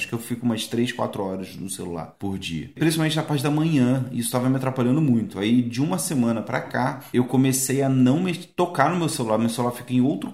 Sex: male